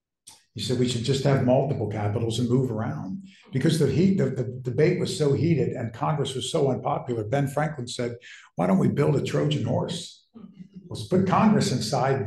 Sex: male